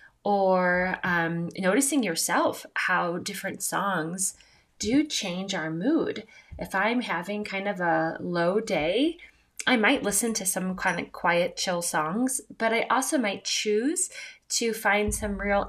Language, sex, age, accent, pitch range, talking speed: English, female, 20-39, American, 170-220 Hz, 145 wpm